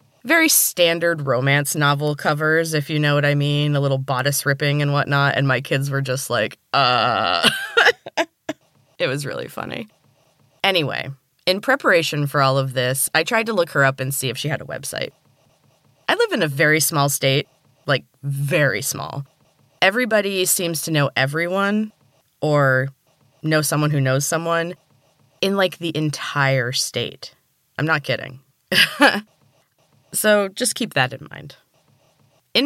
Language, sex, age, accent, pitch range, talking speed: English, female, 20-39, American, 135-165 Hz, 155 wpm